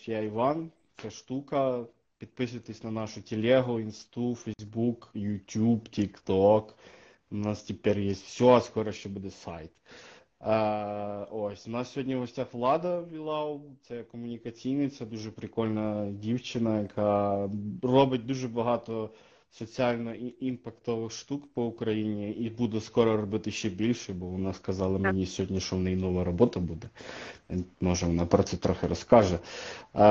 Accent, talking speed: native, 135 wpm